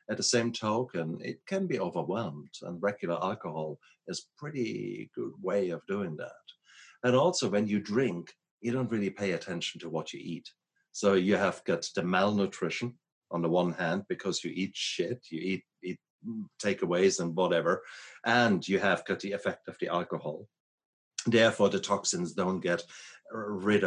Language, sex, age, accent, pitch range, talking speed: English, male, 60-79, German, 90-120 Hz, 170 wpm